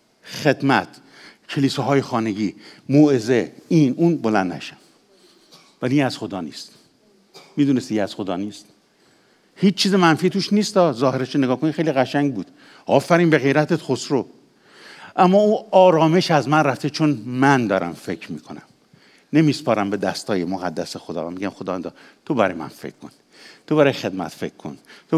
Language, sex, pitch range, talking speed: English, male, 120-165 Hz, 145 wpm